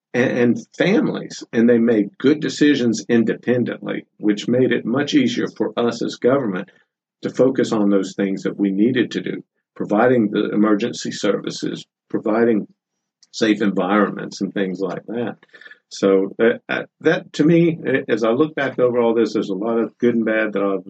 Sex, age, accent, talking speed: male, 50-69, American, 170 wpm